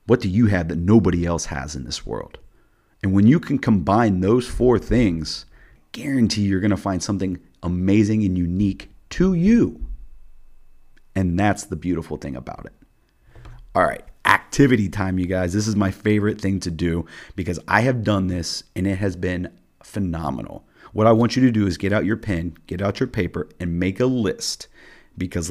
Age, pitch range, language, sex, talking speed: 30-49, 90-115 Hz, English, male, 190 wpm